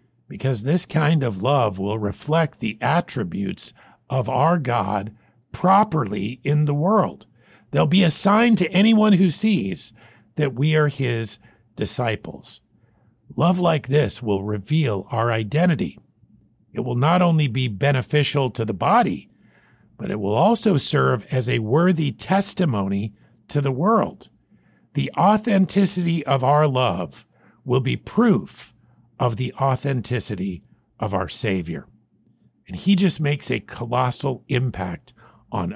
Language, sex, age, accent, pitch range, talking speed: English, male, 50-69, American, 115-165 Hz, 135 wpm